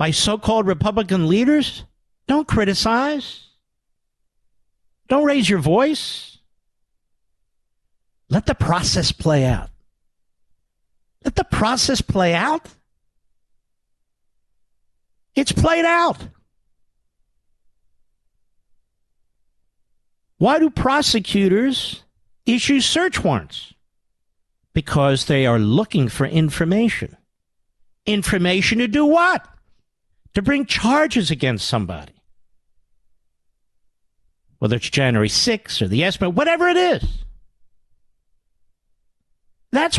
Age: 50-69